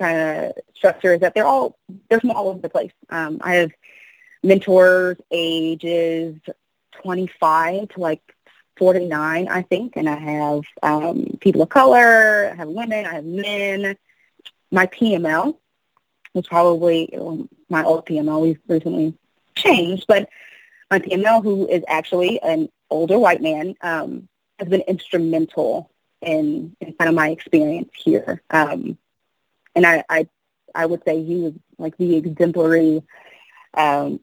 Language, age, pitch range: English, 20-39, 160-195 Hz